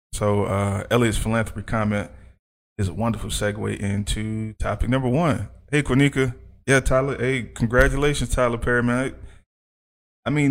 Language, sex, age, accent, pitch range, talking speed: English, male, 20-39, American, 95-110 Hz, 135 wpm